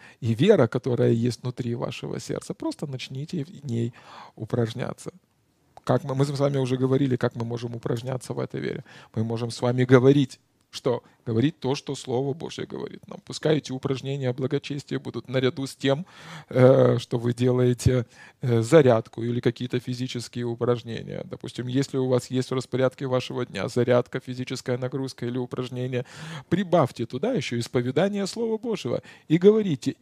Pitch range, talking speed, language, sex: 125-150 Hz, 155 wpm, Russian, male